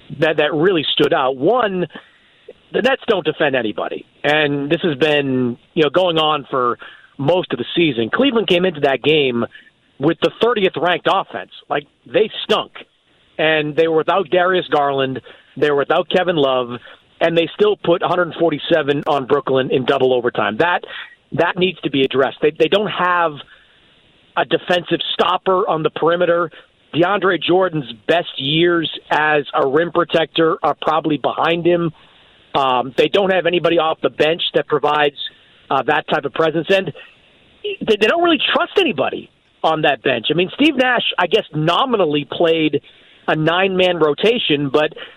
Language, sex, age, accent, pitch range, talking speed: English, male, 40-59, American, 150-195 Hz, 165 wpm